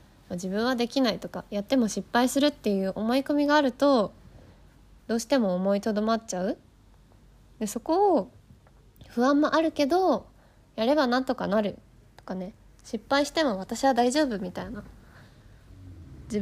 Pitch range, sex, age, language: 185-255 Hz, female, 20-39, Japanese